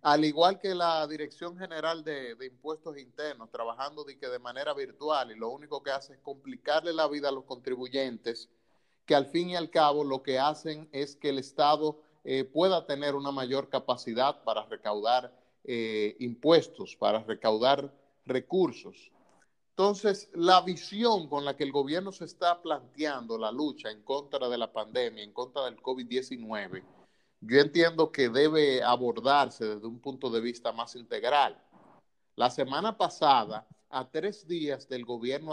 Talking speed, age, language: 160 wpm, 30-49, Spanish